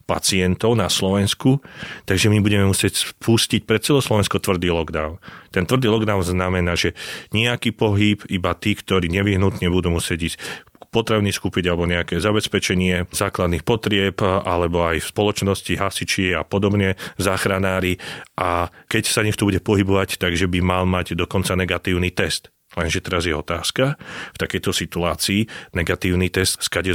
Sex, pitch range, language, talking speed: male, 90-105 Hz, Slovak, 145 wpm